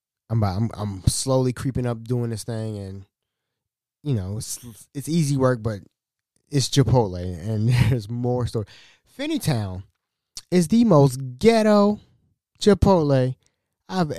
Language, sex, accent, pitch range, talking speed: English, male, American, 110-145 Hz, 120 wpm